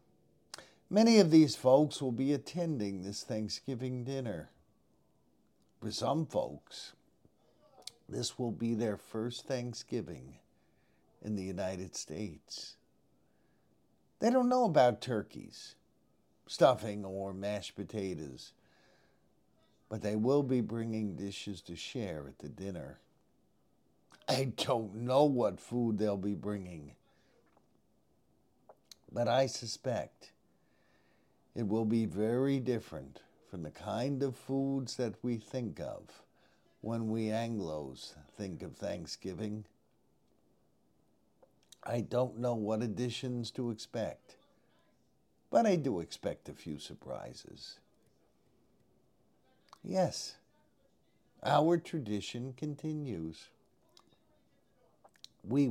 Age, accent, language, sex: 50-69, American, English, male